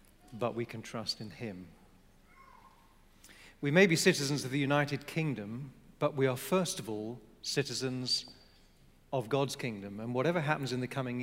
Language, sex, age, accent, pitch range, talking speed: English, male, 40-59, British, 110-135 Hz, 160 wpm